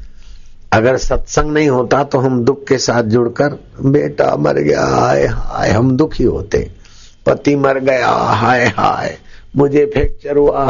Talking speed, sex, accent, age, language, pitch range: 145 wpm, male, native, 60-79, Hindi, 100-130 Hz